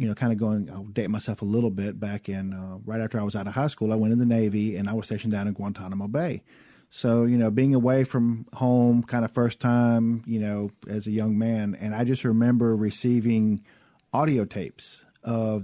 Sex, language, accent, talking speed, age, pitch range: male, English, American, 230 wpm, 40-59, 105-130 Hz